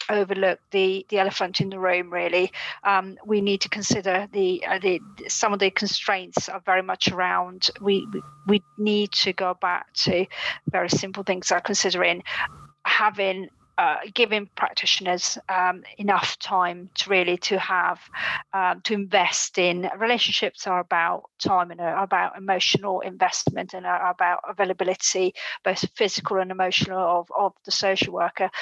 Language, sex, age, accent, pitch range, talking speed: English, female, 40-59, British, 185-205 Hz, 150 wpm